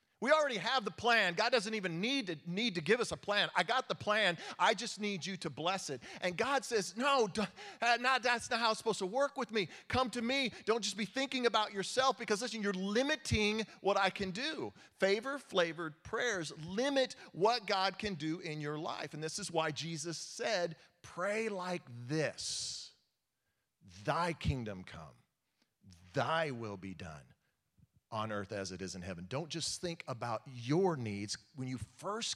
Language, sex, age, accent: English, male, 40-59, American